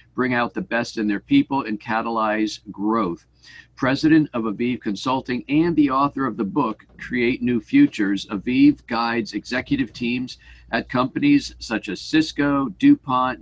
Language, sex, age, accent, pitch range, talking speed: English, male, 50-69, American, 110-145 Hz, 150 wpm